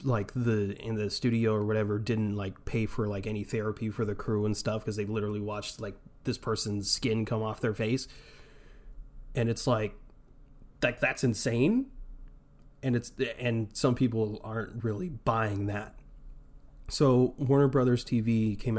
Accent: American